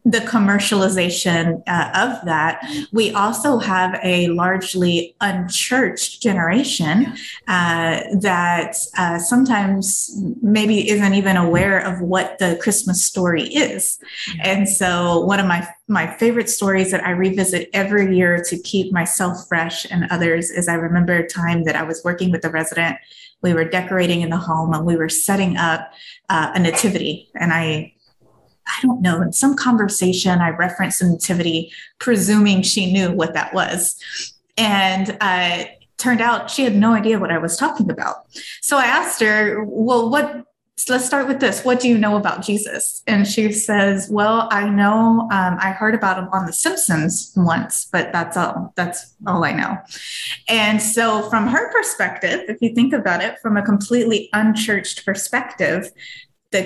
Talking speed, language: 165 wpm, English